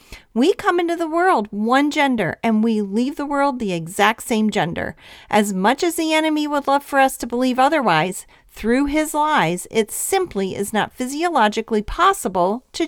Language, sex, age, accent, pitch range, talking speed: English, female, 40-59, American, 235-335 Hz, 175 wpm